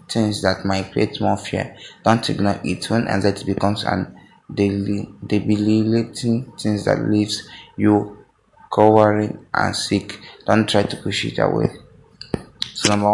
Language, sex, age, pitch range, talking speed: English, male, 20-39, 100-110 Hz, 135 wpm